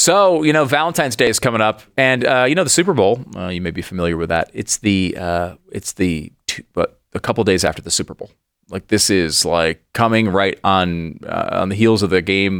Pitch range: 95-130 Hz